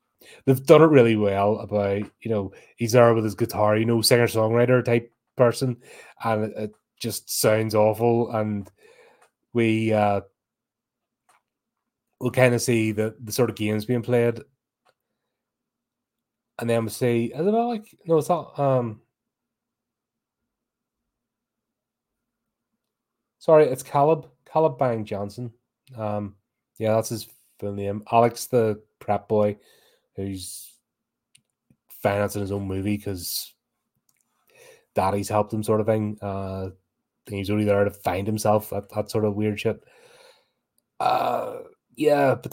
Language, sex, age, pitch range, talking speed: English, male, 30-49, 105-120 Hz, 135 wpm